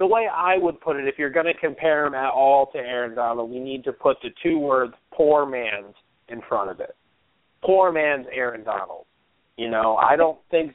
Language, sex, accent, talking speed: English, male, American, 220 wpm